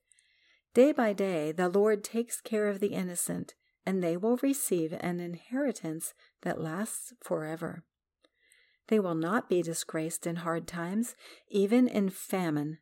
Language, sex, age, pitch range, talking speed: English, female, 50-69, 170-215 Hz, 140 wpm